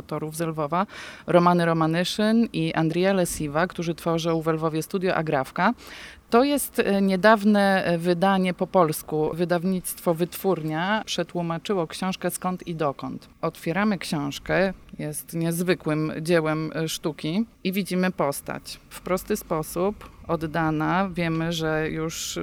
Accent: native